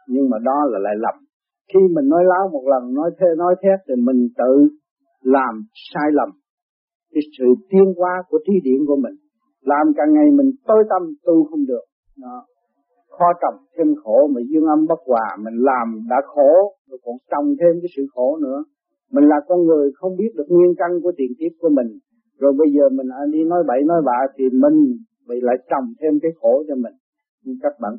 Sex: male